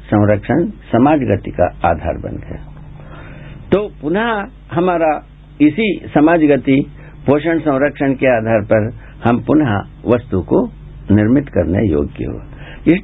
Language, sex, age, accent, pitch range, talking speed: Hindi, male, 60-79, native, 110-170 Hz, 125 wpm